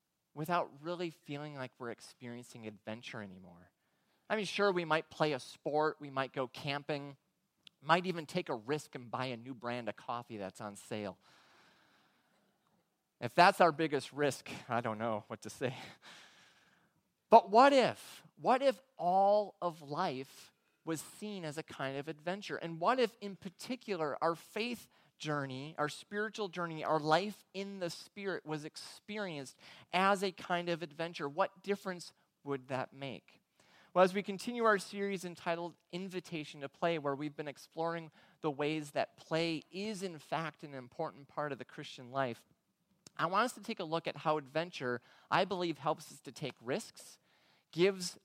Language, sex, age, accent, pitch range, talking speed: English, male, 30-49, American, 135-180 Hz, 170 wpm